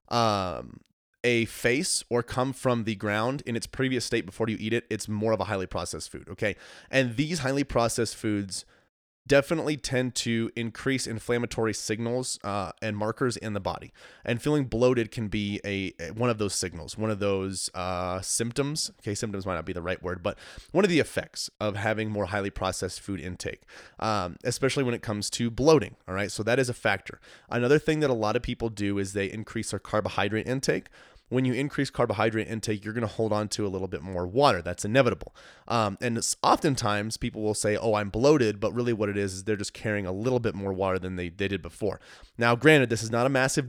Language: English